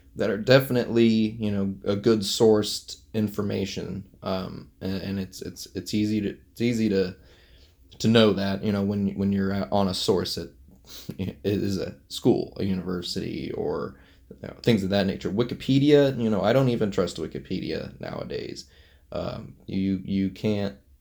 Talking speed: 155 wpm